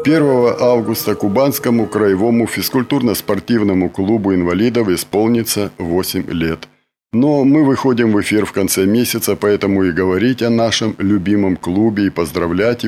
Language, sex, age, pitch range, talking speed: Russian, male, 50-69, 95-120 Hz, 125 wpm